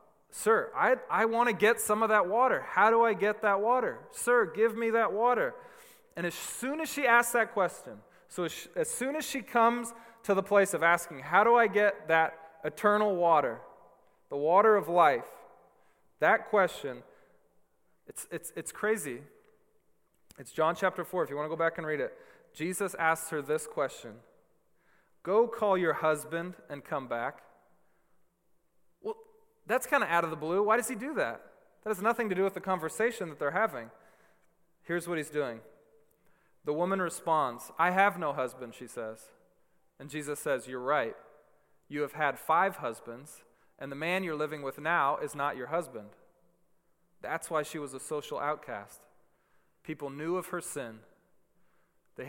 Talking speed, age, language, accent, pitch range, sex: 175 wpm, 20-39, English, American, 155-230 Hz, male